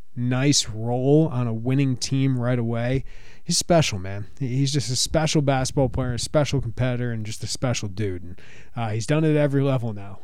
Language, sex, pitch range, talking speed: English, male, 115-145 Hz, 200 wpm